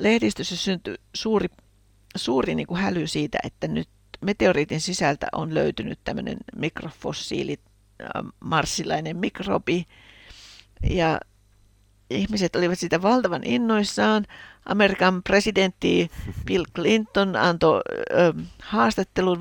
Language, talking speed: Finnish, 100 wpm